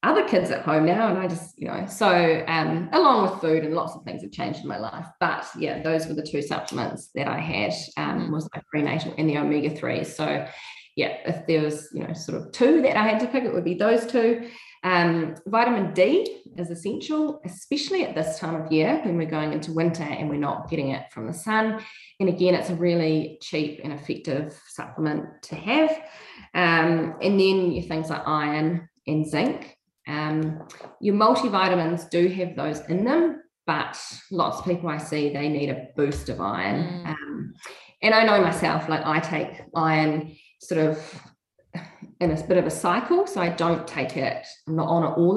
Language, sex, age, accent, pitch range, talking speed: English, female, 20-39, Australian, 155-195 Hz, 200 wpm